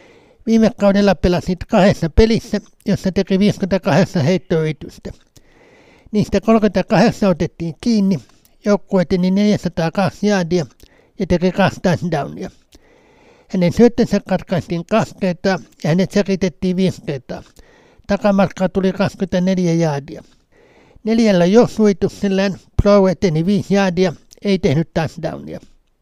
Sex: male